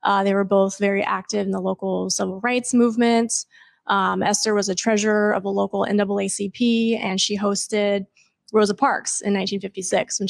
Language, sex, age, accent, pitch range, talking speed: English, female, 20-39, American, 195-220 Hz, 170 wpm